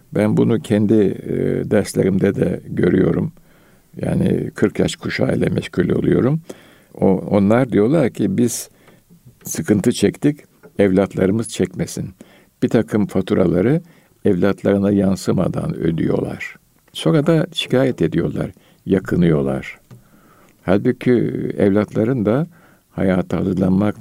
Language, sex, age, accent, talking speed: Turkish, male, 60-79, native, 95 wpm